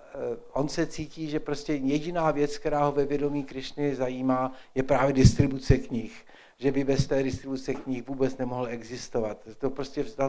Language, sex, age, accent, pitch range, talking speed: Czech, male, 50-69, native, 130-180 Hz, 170 wpm